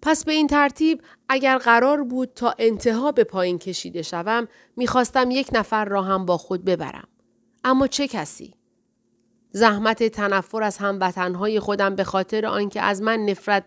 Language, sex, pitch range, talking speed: Persian, female, 185-235 Hz, 155 wpm